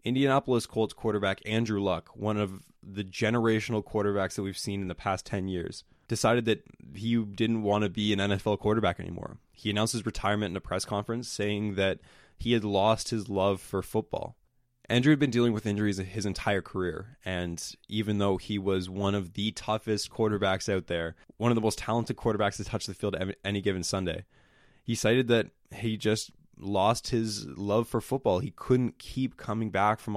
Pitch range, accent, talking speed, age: 100-120 Hz, American, 190 wpm, 20-39